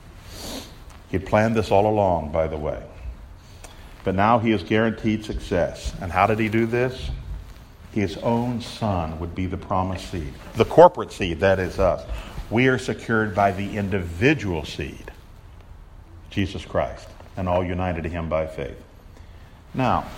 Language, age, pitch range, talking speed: English, 50-69, 90-130 Hz, 150 wpm